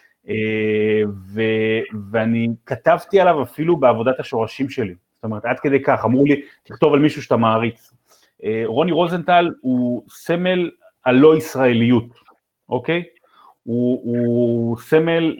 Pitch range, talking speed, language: 115-150 Hz, 130 wpm, Hebrew